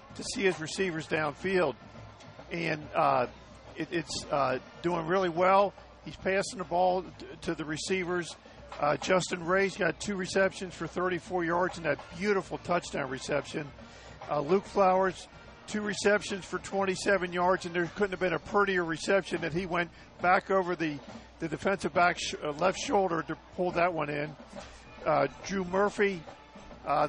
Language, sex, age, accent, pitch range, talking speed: English, male, 50-69, American, 170-195 Hz, 155 wpm